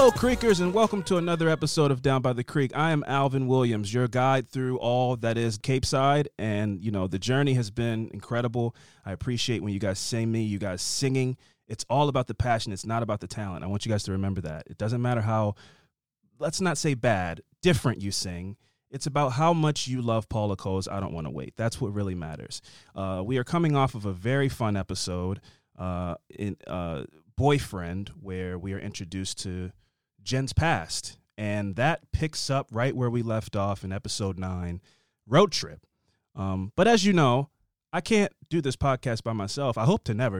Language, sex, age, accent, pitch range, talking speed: English, male, 30-49, American, 100-135 Hz, 205 wpm